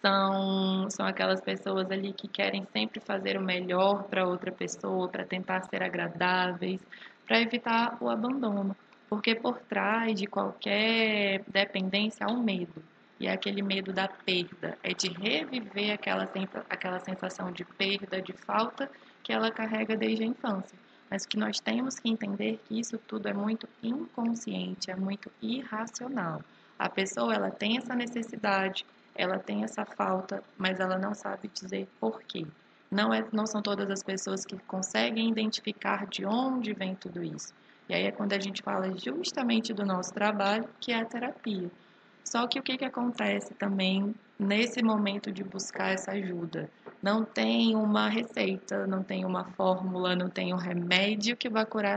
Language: Portuguese